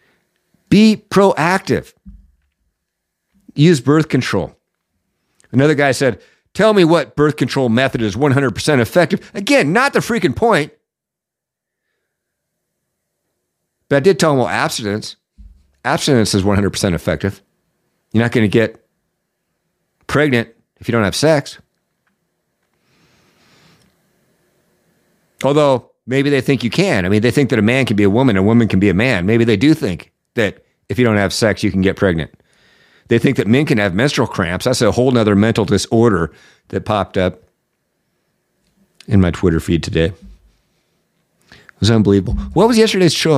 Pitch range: 100-155 Hz